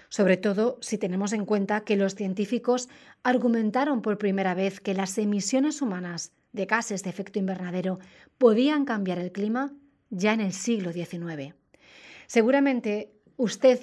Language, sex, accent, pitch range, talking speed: Spanish, female, Spanish, 190-240 Hz, 145 wpm